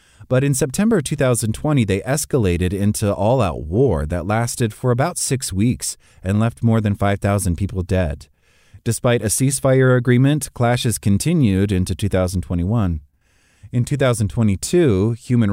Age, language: 30-49, English